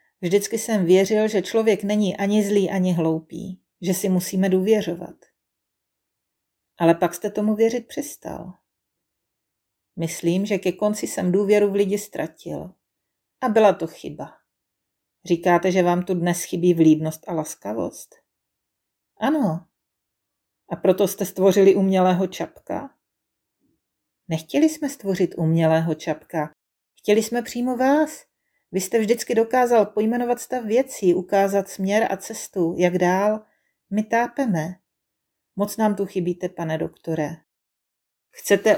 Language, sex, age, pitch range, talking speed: Czech, female, 40-59, 175-215 Hz, 125 wpm